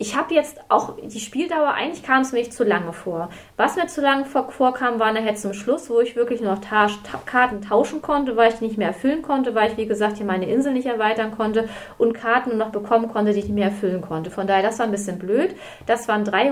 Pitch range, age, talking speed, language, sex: 200-250 Hz, 30-49, 260 wpm, German, female